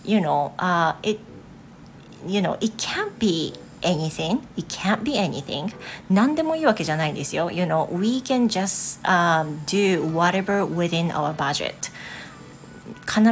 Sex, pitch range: female, 160-210 Hz